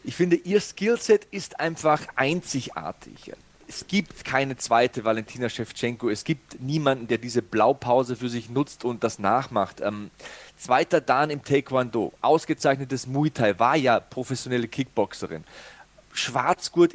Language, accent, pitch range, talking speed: German, German, 130-165 Hz, 135 wpm